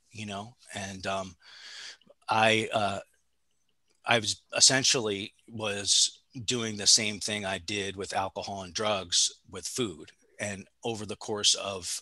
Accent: American